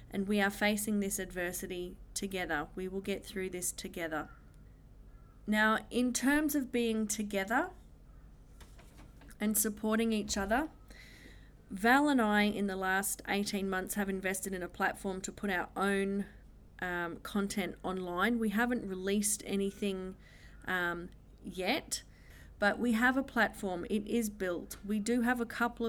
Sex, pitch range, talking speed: female, 185-215 Hz, 145 wpm